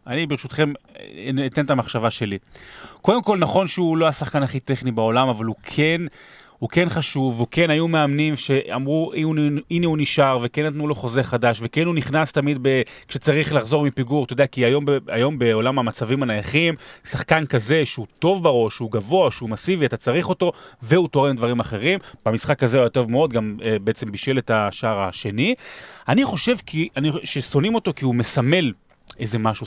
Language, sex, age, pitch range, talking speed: Hebrew, male, 30-49, 125-175 Hz, 170 wpm